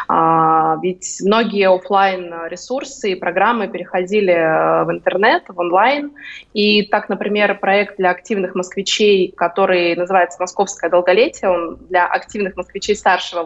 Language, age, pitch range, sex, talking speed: Russian, 20-39, 180-220 Hz, female, 115 wpm